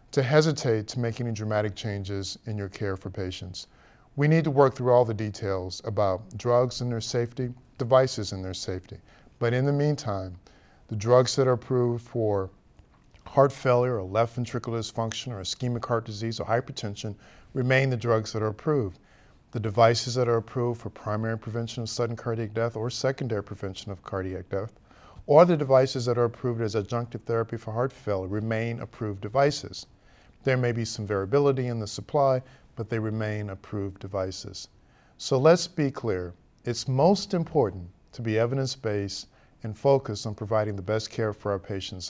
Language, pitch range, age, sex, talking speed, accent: English, 100-125 Hz, 50-69, male, 175 wpm, American